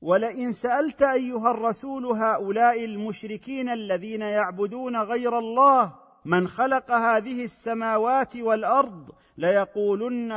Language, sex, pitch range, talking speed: Arabic, male, 195-245 Hz, 95 wpm